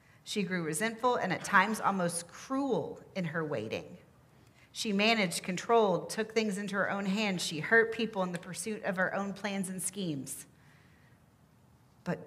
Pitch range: 170-215 Hz